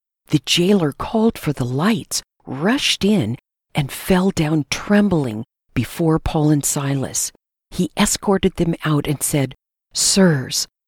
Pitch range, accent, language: 135-190 Hz, American, English